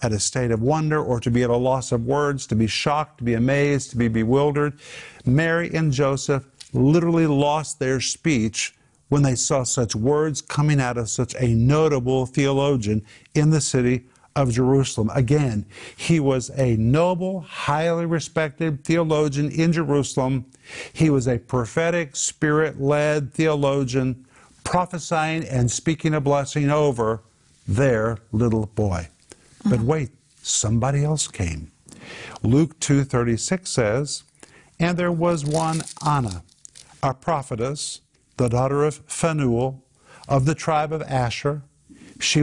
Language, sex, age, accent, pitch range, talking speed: English, male, 50-69, American, 125-150 Hz, 135 wpm